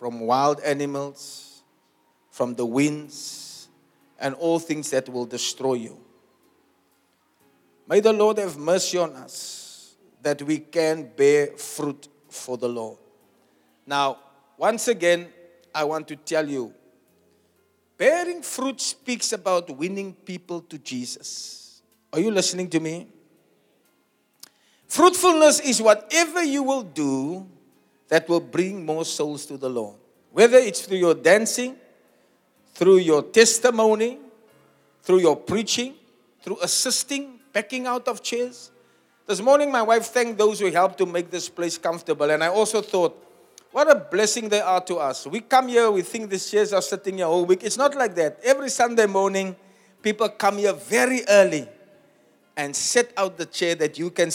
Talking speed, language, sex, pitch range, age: 150 wpm, English, male, 150-230 Hz, 50-69